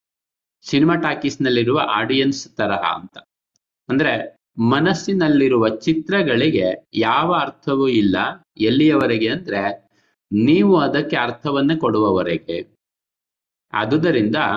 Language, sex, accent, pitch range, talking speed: Kannada, male, native, 120-165 Hz, 80 wpm